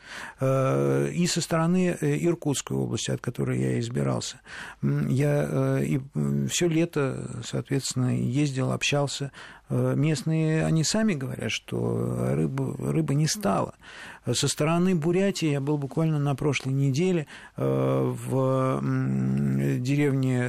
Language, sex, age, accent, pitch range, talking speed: Russian, male, 50-69, native, 120-145 Hz, 105 wpm